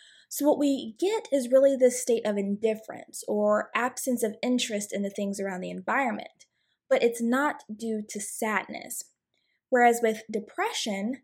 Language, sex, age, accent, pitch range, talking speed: English, female, 20-39, American, 210-275 Hz, 155 wpm